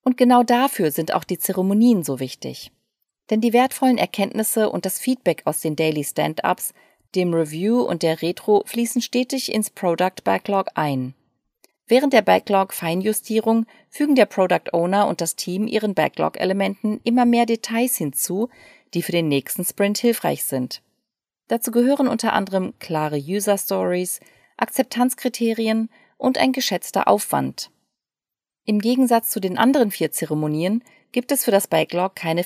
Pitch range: 170-235 Hz